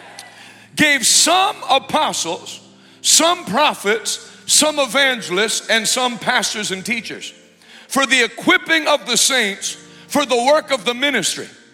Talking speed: 125 wpm